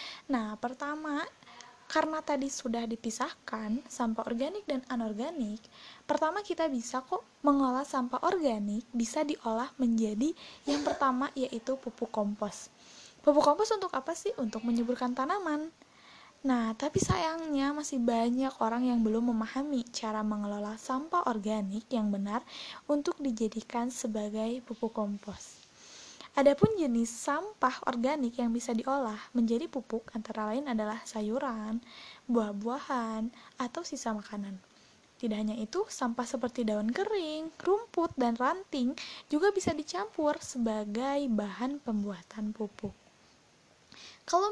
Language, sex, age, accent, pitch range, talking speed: Indonesian, female, 20-39, native, 225-295 Hz, 120 wpm